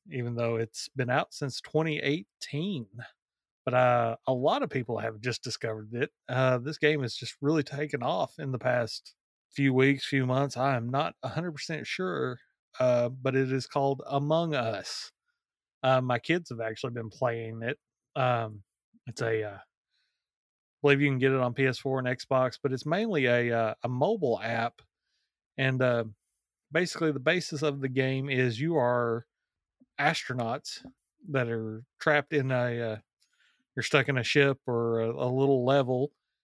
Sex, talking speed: male, 170 wpm